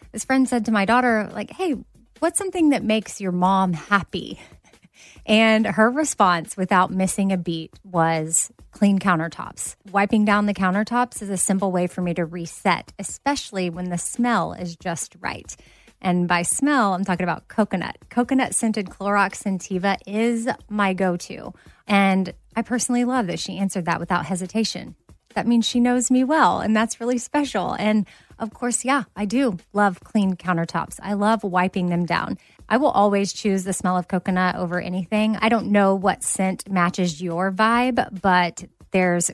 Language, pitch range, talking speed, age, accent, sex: English, 180-225 Hz, 170 wpm, 30-49, American, female